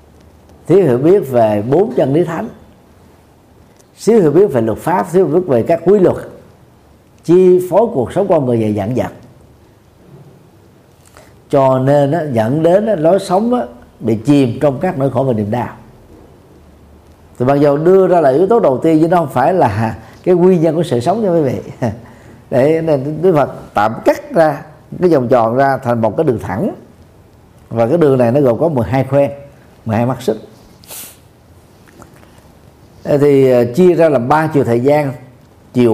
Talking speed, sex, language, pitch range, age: 180 wpm, male, Vietnamese, 115-160 Hz, 50-69